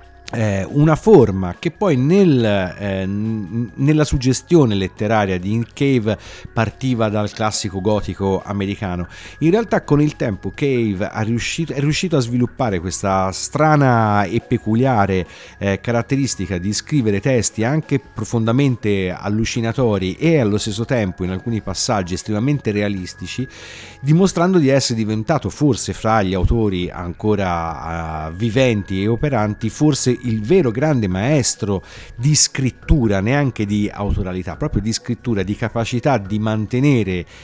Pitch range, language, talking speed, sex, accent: 95-130 Hz, Italian, 115 wpm, male, native